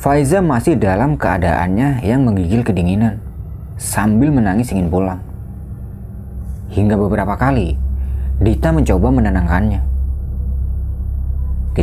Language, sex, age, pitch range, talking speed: Indonesian, male, 20-39, 85-115 Hz, 90 wpm